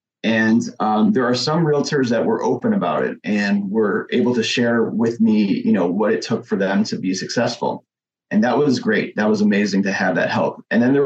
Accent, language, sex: American, English, male